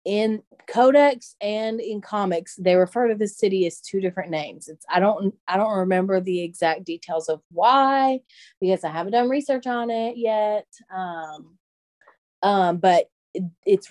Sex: female